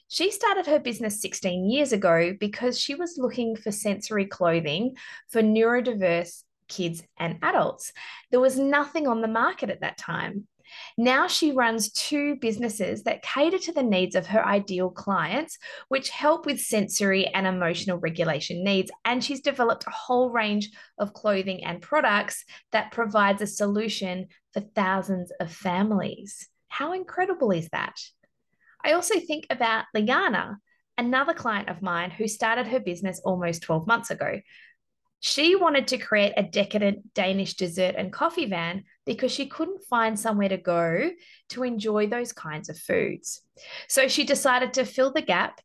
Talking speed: 160 wpm